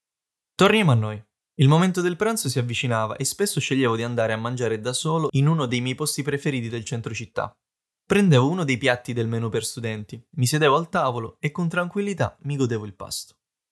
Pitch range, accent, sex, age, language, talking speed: 115-150 Hz, native, male, 20-39, Italian, 200 wpm